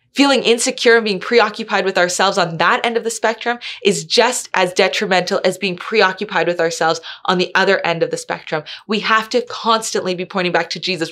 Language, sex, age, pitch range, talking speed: English, female, 20-39, 180-235 Hz, 205 wpm